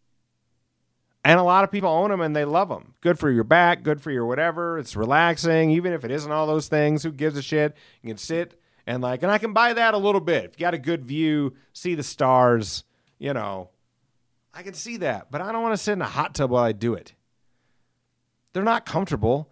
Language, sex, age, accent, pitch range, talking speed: English, male, 40-59, American, 110-160 Hz, 235 wpm